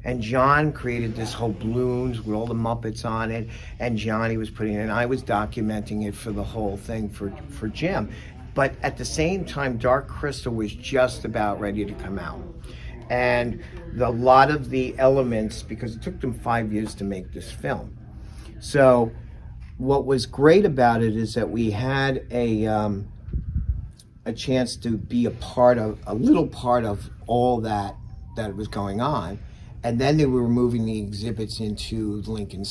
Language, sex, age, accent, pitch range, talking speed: English, male, 50-69, American, 105-125 Hz, 180 wpm